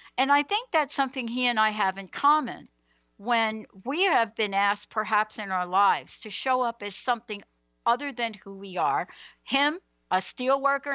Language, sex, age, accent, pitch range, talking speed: English, female, 60-79, American, 185-245 Hz, 180 wpm